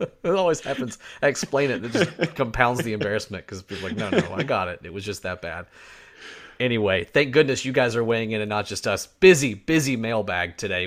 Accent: American